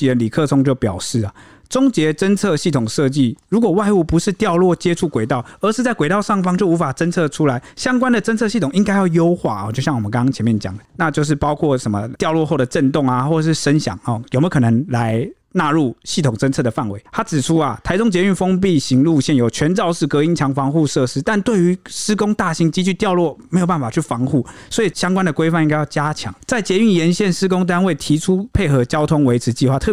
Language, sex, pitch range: Chinese, male, 125-175 Hz